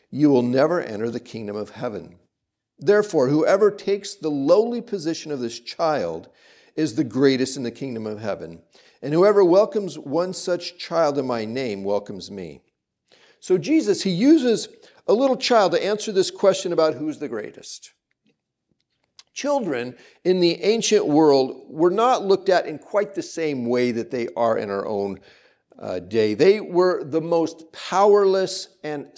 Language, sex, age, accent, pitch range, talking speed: English, male, 50-69, American, 135-200 Hz, 160 wpm